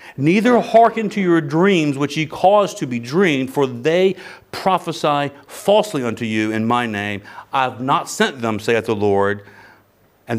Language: English